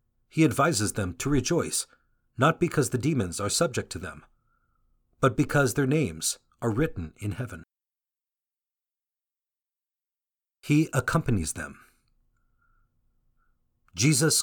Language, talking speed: English, 105 wpm